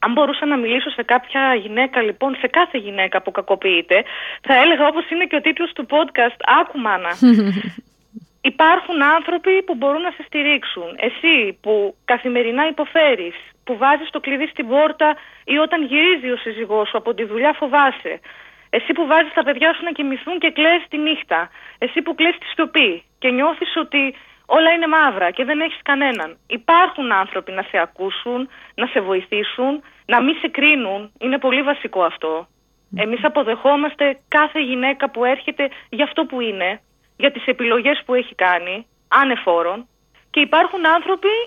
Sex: female